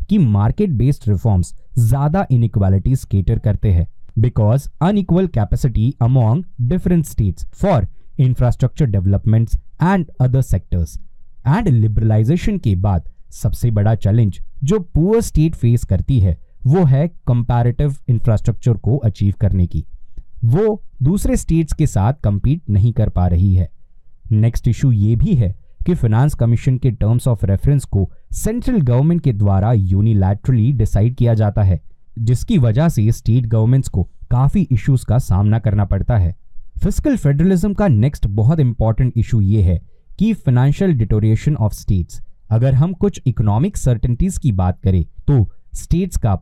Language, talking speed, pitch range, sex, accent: Hindi, 130 wpm, 100-140 Hz, male, native